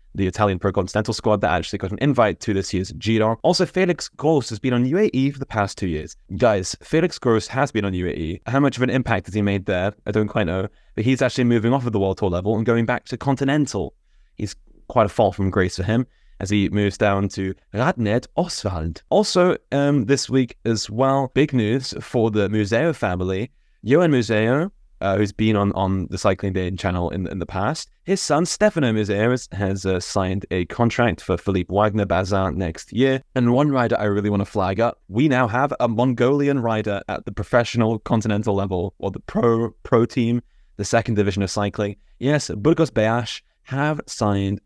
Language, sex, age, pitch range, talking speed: English, male, 20-39, 100-130 Hz, 205 wpm